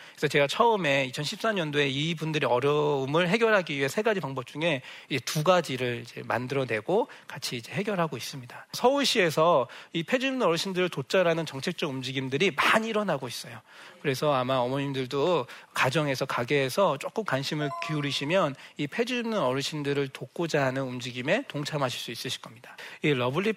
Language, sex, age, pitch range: Korean, male, 40-59, 135-190 Hz